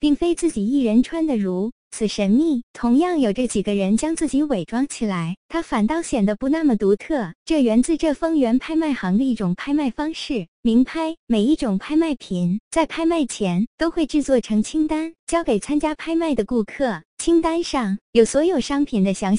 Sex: male